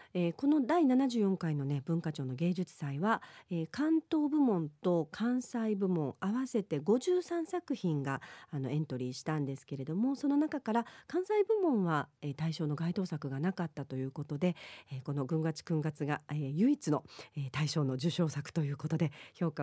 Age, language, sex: 40-59, Japanese, female